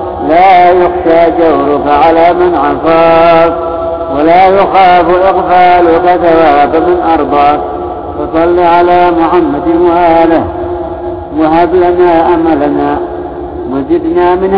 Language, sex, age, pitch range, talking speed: Arabic, male, 50-69, 170-190 Hz, 85 wpm